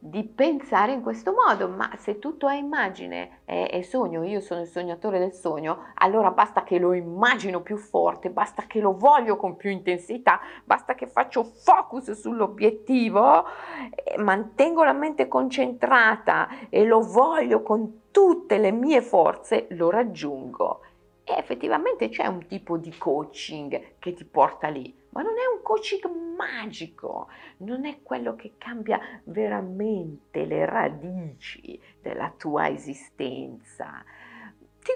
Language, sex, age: Italian, female, 50-69